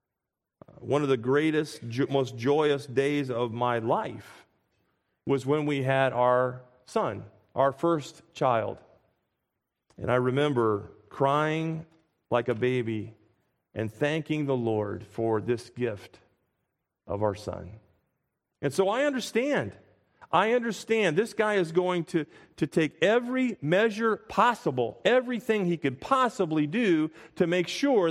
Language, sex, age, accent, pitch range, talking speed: English, male, 40-59, American, 135-220 Hz, 130 wpm